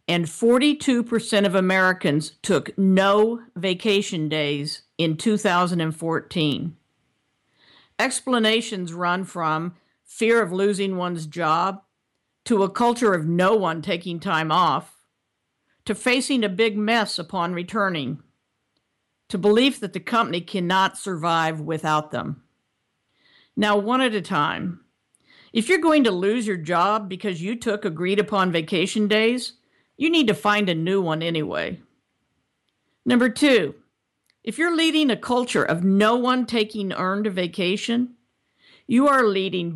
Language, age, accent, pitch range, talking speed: English, 50-69, American, 170-225 Hz, 130 wpm